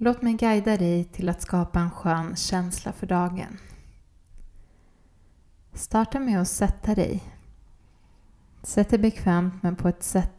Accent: native